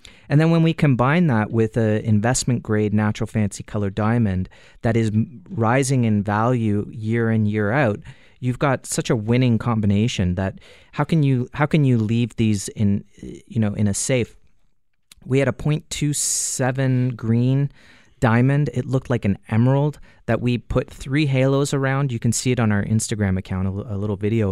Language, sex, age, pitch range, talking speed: English, male, 30-49, 110-140 Hz, 175 wpm